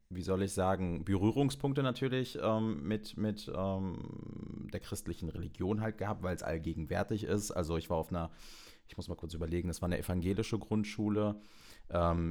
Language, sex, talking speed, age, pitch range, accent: German, male, 170 wpm, 30-49, 90-110 Hz, German